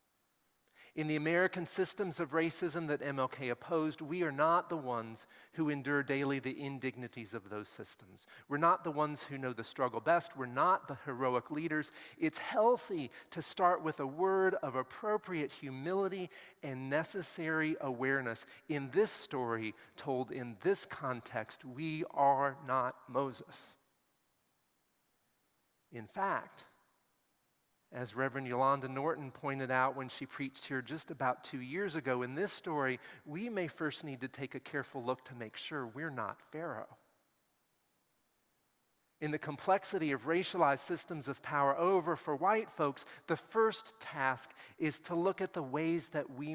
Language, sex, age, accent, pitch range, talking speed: English, male, 40-59, American, 130-165 Hz, 150 wpm